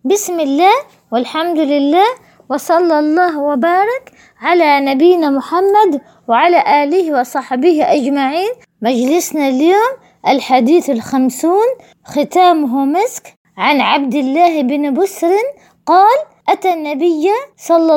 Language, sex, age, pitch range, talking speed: Arabic, female, 20-39, 290-375 Hz, 95 wpm